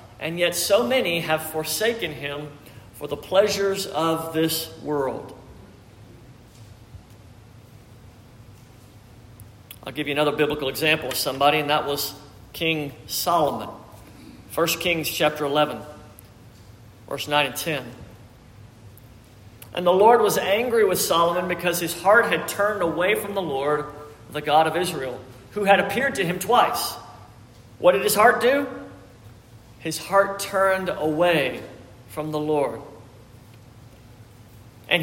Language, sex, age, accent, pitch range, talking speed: English, male, 50-69, American, 115-165 Hz, 125 wpm